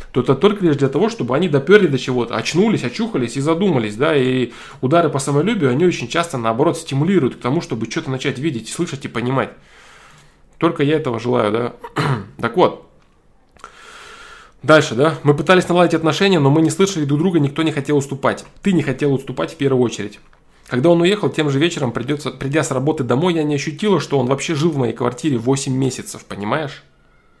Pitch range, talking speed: 125-165 Hz, 195 wpm